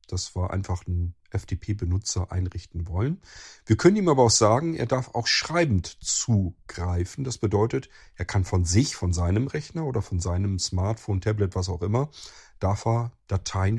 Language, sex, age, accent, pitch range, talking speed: German, male, 40-59, German, 95-120 Hz, 170 wpm